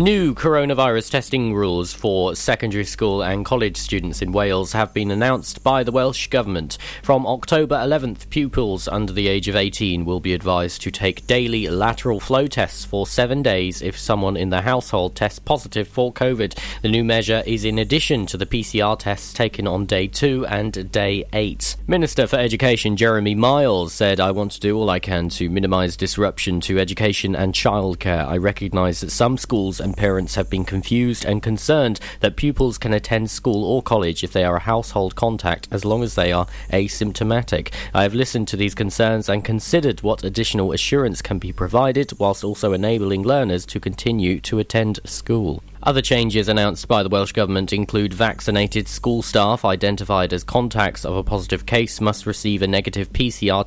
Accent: British